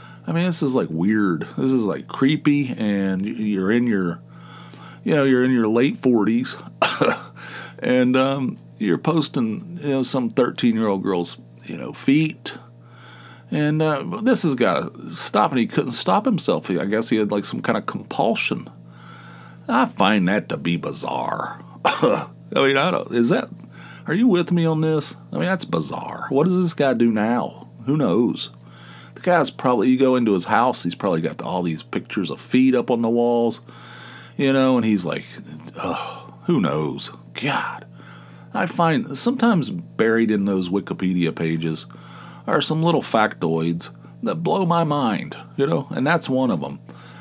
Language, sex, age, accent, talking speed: English, male, 40-59, American, 170 wpm